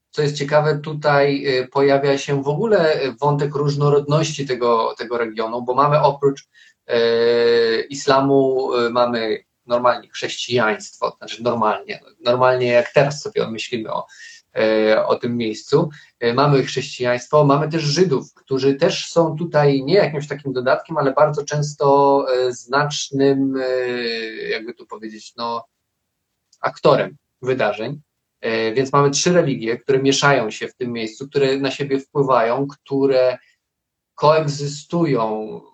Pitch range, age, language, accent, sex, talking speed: 125-145 Hz, 20-39, Polish, native, male, 120 wpm